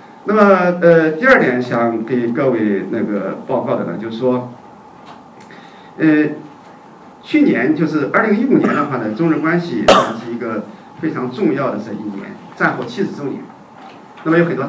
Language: Chinese